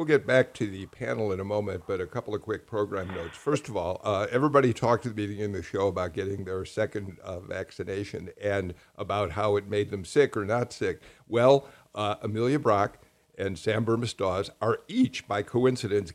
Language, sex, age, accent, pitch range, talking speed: English, male, 50-69, American, 100-135 Hz, 205 wpm